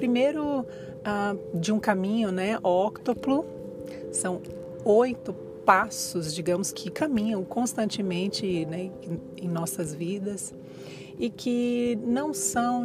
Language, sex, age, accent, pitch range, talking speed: Portuguese, female, 30-49, Brazilian, 175-235 Hz, 105 wpm